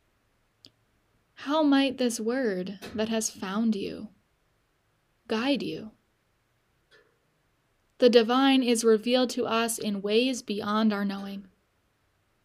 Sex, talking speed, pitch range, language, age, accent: female, 100 wpm, 185-235 Hz, English, 10-29, American